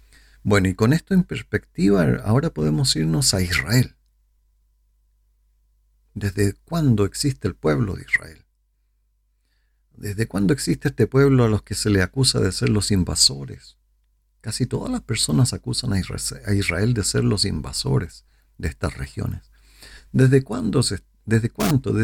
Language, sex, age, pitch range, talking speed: Spanish, male, 50-69, 80-120 Hz, 135 wpm